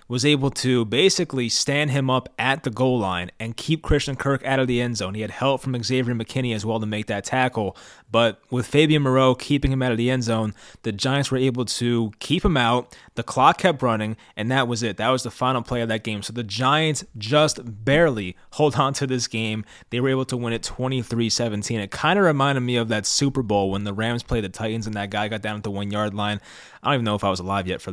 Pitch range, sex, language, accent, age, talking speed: 115-140 Hz, male, English, American, 20-39, 255 wpm